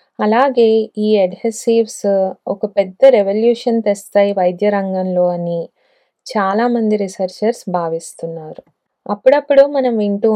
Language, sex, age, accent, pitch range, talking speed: Telugu, female, 20-39, native, 190-225 Hz, 95 wpm